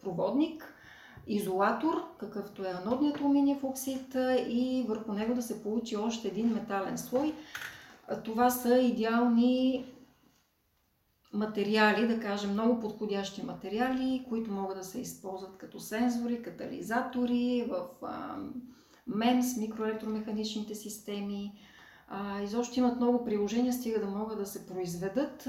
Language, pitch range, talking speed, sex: Bulgarian, 200-245 Hz, 115 wpm, female